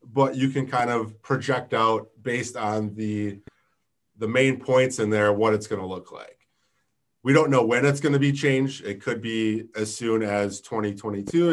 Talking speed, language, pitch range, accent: 180 wpm, English, 105-125 Hz, American